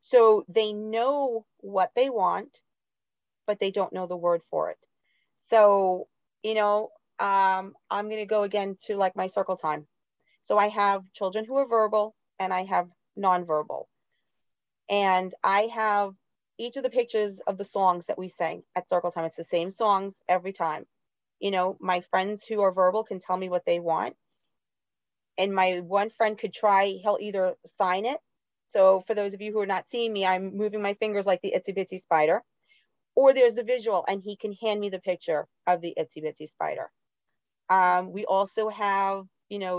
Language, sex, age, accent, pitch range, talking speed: English, female, 30-49, American, 185-215 Hz, 190 wpm